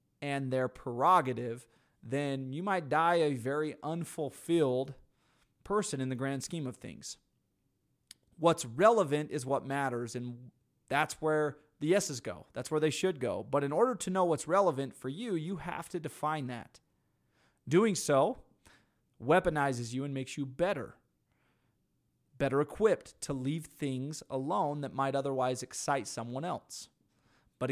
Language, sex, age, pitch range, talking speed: English, male, 30-49, 125-160 Hz, 145 wpm